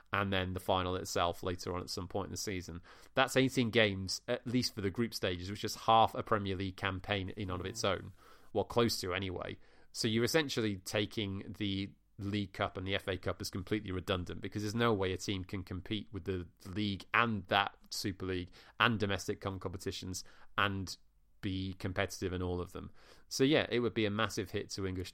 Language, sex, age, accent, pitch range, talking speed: English, male, 30-49, British, 95-110 Hz, 210 wpm